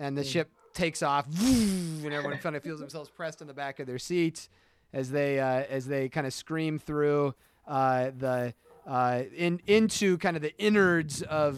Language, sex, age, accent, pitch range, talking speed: English, male, 30-49, American, 135-160 Hz, 190 wpm